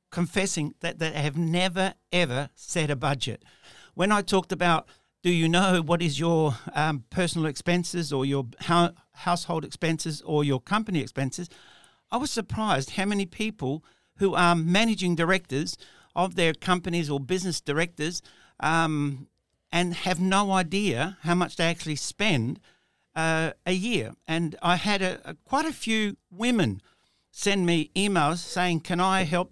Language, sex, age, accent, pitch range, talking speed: English, male, 60-79, Australian, 150-185 Hz, 150 wpm